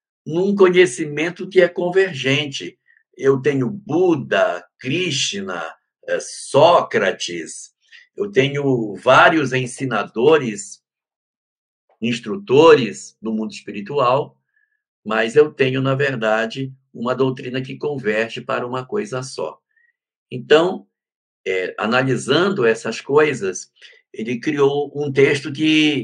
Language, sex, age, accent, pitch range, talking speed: Portuguese, male, 60-79, Brazilian, 125-205 Hz, 90 wpm